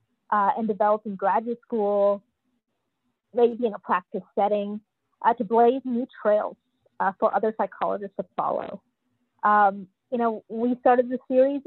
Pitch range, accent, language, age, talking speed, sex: 210-255 Hz, American, English, 30-49, 150 wpm, female